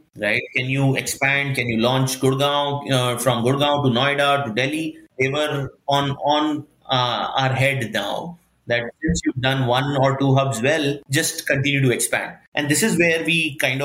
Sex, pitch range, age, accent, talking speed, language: male, 125-150 Hz, 30-49, Indian, 180 wpm, English